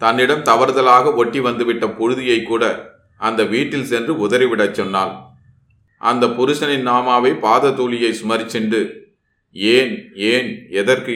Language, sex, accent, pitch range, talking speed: Tamil, male, native, 105-125 Hz, 115 wpm